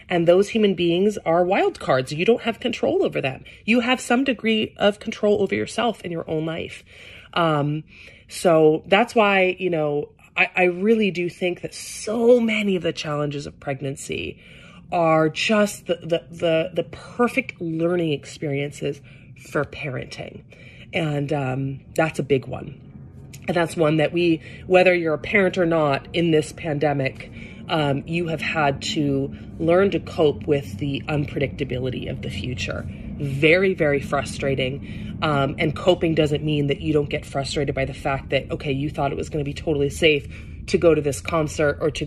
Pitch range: 140-175 Hz